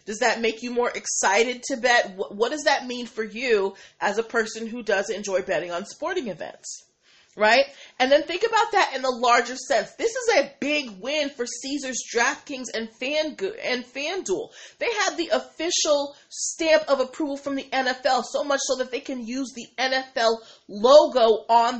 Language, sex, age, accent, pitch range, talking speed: English, female, 30-49, American, 200-265 Hz, 185 wpm